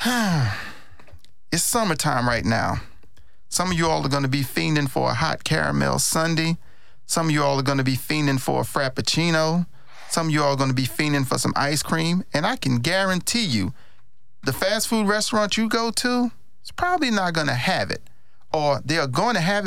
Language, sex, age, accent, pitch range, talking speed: English, male, 40-59, American, 125-185 Hz, 205 wpm